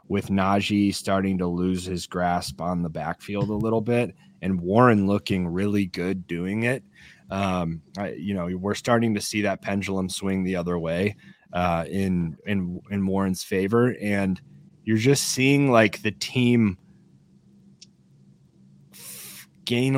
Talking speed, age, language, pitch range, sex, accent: 145 wpm, 20-39, English, 90-105 Hz, male, American